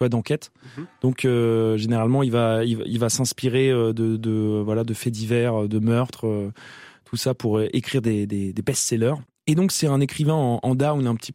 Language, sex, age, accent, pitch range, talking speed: French, male, 20-39, French, 115-150 Hz, 195 wpm